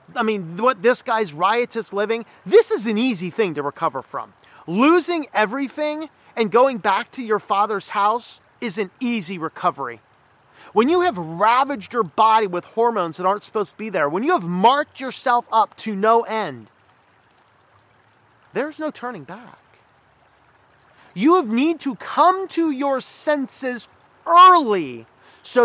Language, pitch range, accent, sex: English, 200-275 Hz, American, male